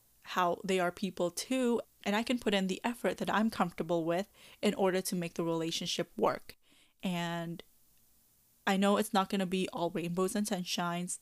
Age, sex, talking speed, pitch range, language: 10-29, female, 185 wpm, 175-205 Hz, English